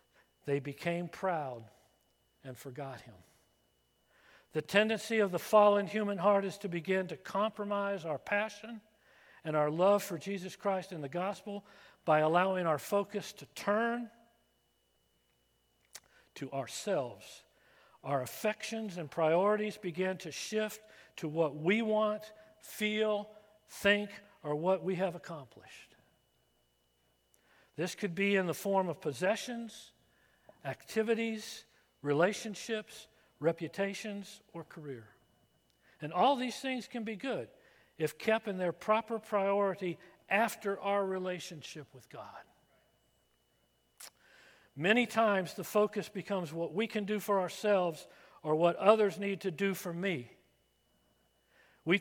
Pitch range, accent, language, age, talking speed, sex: 155-210 Hz, American, English, 50-69, 120 wpm, male